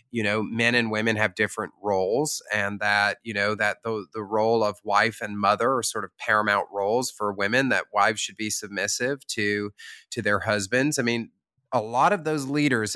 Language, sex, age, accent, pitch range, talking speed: English, male, 30-49, American, 110-145 Hz, 200 wpm